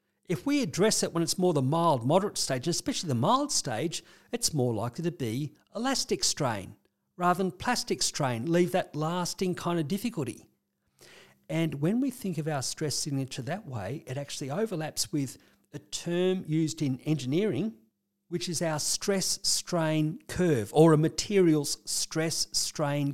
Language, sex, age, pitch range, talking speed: English, male, 50-69, 145-190 Hz, 155 wpm